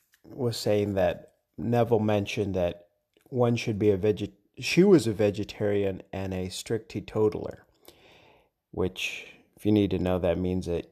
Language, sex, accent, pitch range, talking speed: English, male, American, 95-115 Hz, 155 wpm